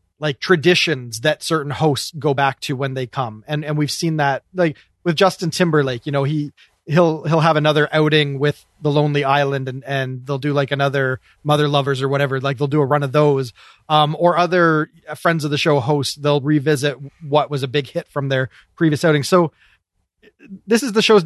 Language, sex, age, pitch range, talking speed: English, male, 30-49, 140-165 Hz, 205 wpm